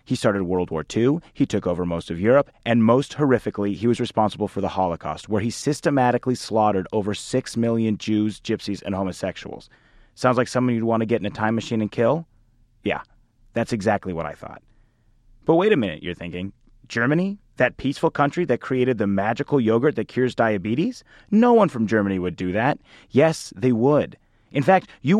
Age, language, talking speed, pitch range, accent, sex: 30-49, English, 195 wpm, 110-155 Hz, American, male